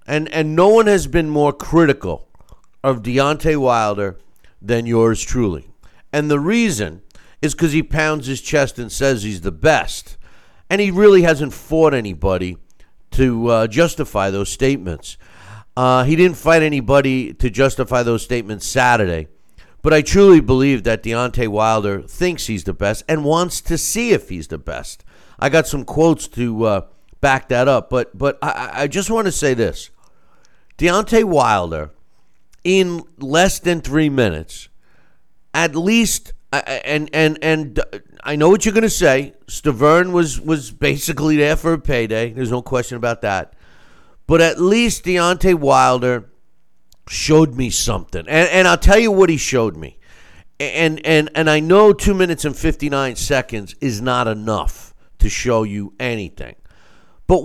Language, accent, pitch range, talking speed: English, American, 110-160 Hz, 160 wpm